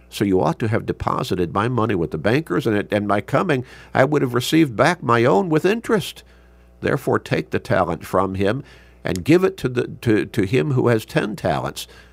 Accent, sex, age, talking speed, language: American, male, 50-69, 215 wpm, English